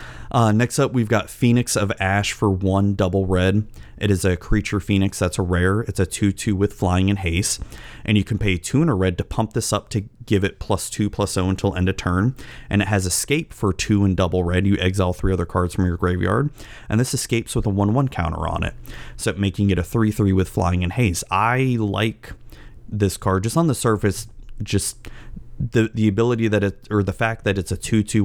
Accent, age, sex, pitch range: American, 30-49, male, 90-105 Hz